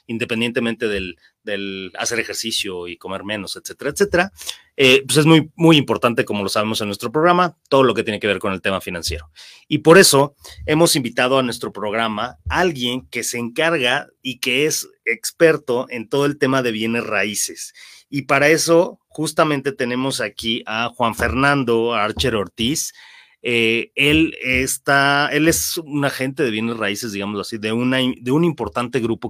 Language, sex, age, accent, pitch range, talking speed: Spanish, male, 30-49, Mexican, 110-140 Hz, 175 wpm